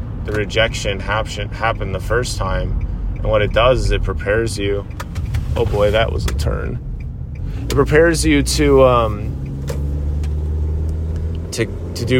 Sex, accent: male, American